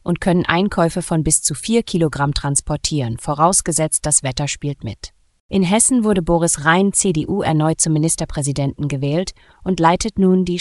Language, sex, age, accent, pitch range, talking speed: German, female, 30-49, German, 145-185 Hz, 160 wpm